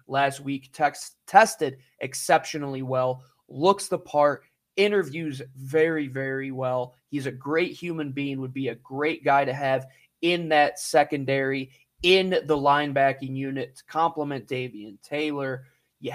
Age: 20-39